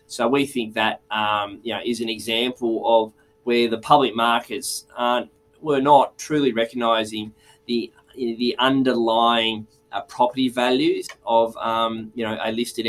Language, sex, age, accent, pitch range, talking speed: English, male, 20-39, Australian, 110-125 Hz, 150 wpm